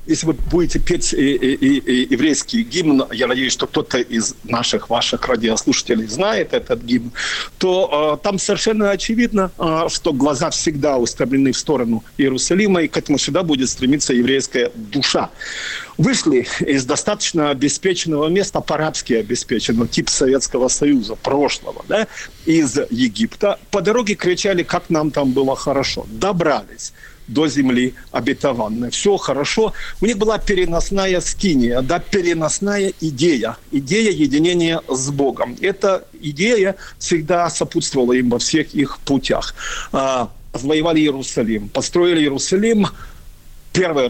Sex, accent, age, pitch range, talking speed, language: male, native, 50-69, 135-200 Hz, 130 wpm, Ukrainian